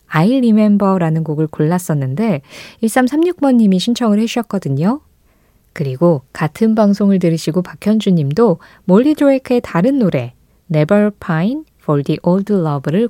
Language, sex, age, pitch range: Korean, female, 20-39, 160-230 Hz